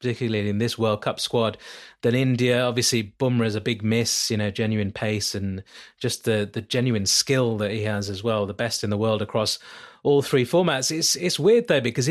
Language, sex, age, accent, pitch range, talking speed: English, male, 30-49, British, 110-130 Hz, 215 wpm